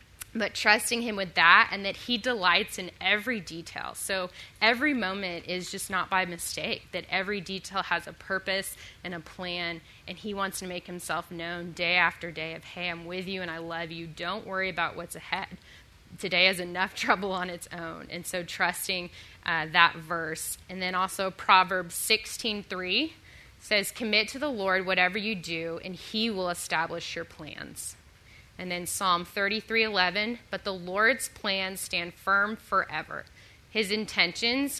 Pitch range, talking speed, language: 170-210 Hz, 170 wpm, English